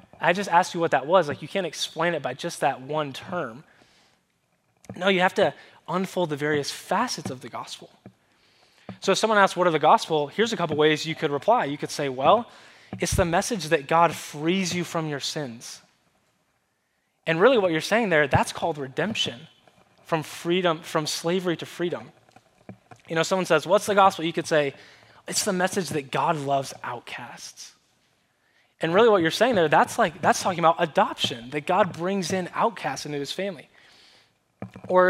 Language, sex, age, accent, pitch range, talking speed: English, male, 20-39, American, 150-190 Hz, 190 wpm